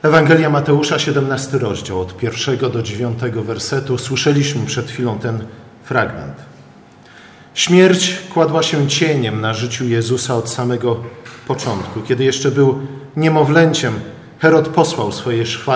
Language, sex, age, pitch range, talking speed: Polish, male, 40-59, 125-160 Hz, 120 wpm